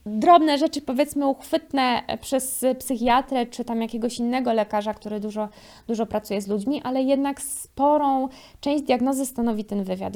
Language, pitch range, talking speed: Polish, 230-275 Hz, 150 wpm